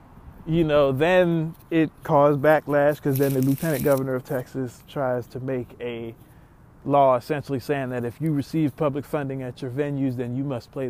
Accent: American